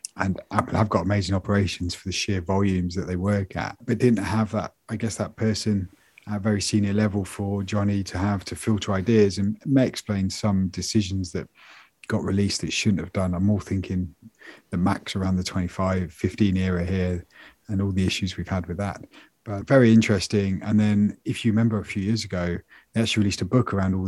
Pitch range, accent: 95-105 Hz, British